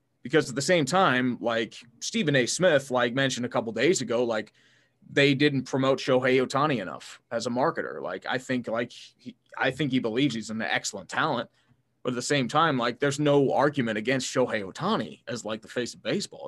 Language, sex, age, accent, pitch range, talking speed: English, male, 20-39, American, 125-145 Hz, 200 wpm